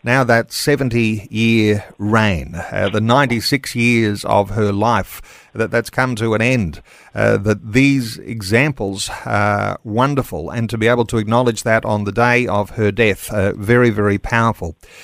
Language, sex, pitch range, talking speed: English, male, 105-135 Hz, 160 wpm